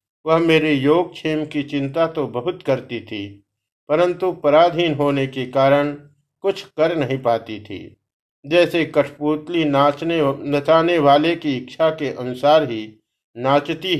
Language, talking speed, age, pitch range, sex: Hindi, 135 wpm, 50-69, 135-160 Hz, male